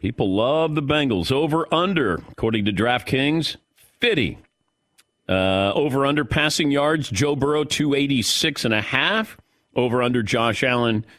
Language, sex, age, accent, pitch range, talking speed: English, male, 50-69, American, 105-150 Hz, 135 wpm